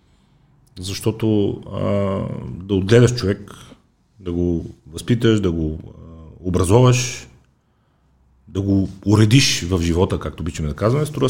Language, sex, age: Bulgarian, male, 40-59